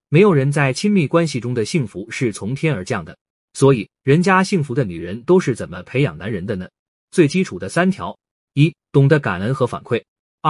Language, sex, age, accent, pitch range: Chinese, male, 30-49, native, 130-170 Hz